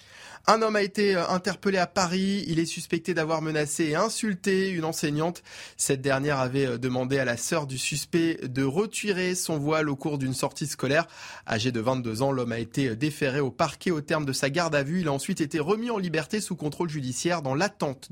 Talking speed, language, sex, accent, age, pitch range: 210 wpm, French, male, French, 20-39, 135-180 Hz